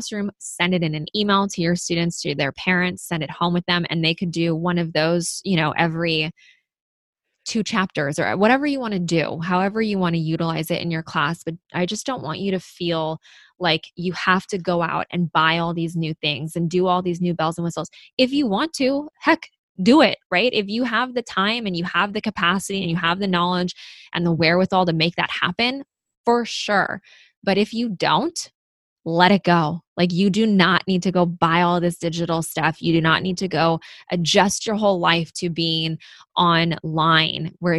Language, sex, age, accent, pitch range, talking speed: English, female, 20-39, American, 165-195 Hz, 220 wpm